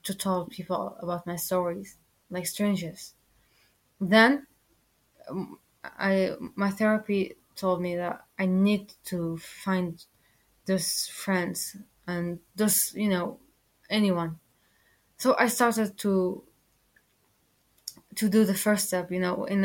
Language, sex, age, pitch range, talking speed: English, female, 20-39, 180-210 Hz, 120 wpm